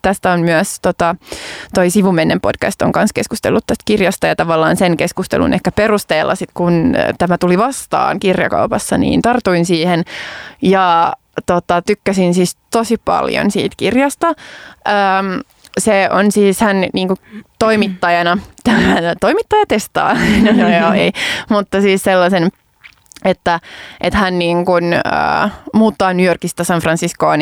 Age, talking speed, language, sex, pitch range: 20-39, 105 wpm, Finnish, female, 170-205 Hz